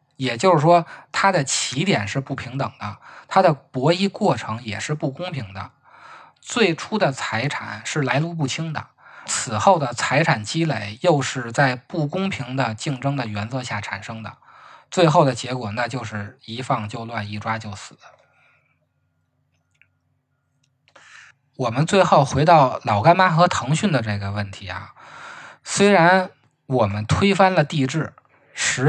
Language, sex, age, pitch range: Chinese, male, 20-39, 110-160 Hz